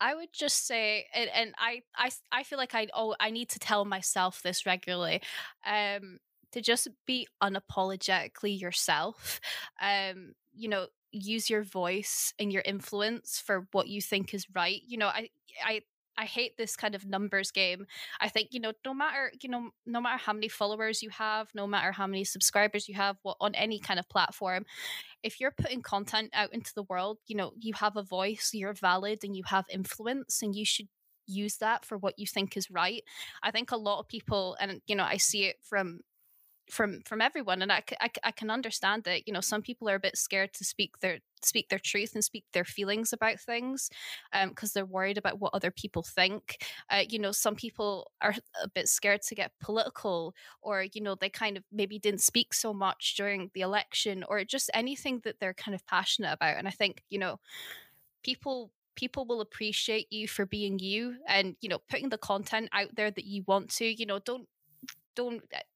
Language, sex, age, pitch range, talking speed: English, female, 10-29, 195-225 Hz, 205 wpm